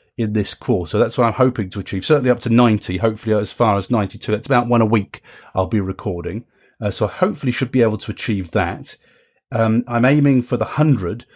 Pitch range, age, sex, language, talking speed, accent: 100-125 Hz, 30-49, male, English, 225 wpm, British